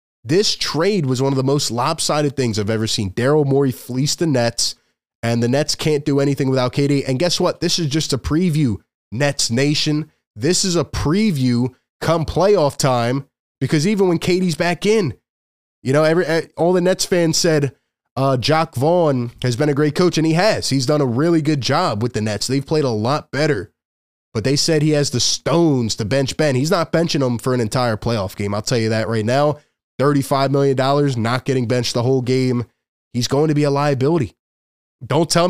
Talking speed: 205 wpm